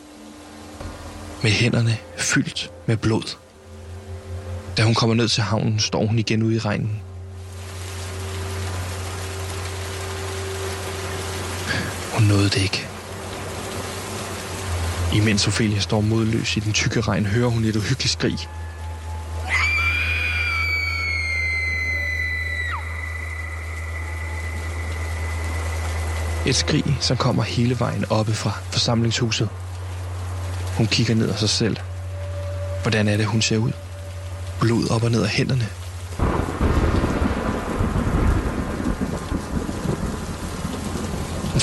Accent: native